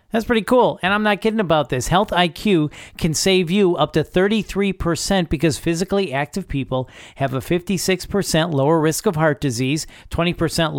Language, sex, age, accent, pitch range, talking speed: English, male, 40-59, American, 140-175 Hz, 165 wpm